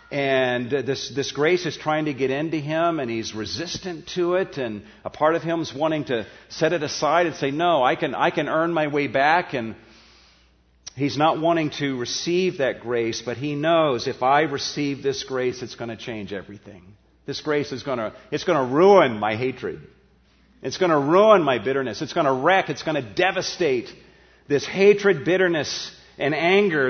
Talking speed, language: 195 wpm, English